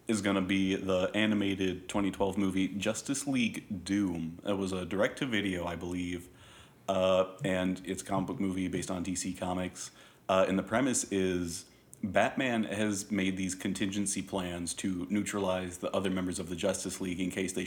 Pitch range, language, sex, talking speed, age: 90-95 Hz, English, male, 175 wpm, 30-49